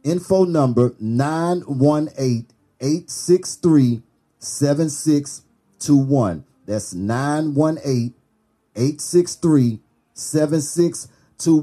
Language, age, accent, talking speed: English, 40-59, American, 50 wpm